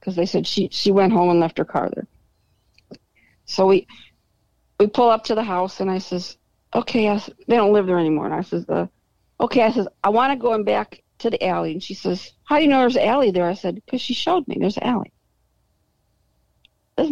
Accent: American